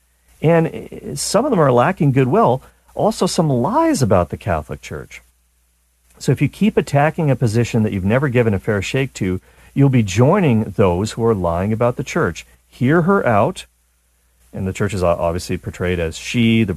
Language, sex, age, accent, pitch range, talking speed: English, male, 50-69, American, 85-130 Hz, 185 wpm